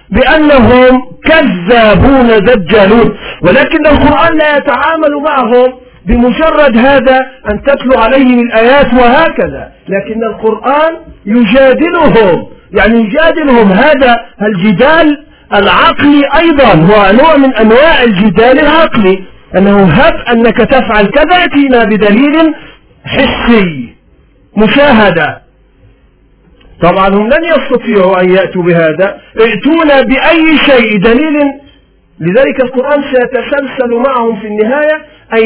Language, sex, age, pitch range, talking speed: Arabic, male, 50-69, 215-290 Hz, 95 wpm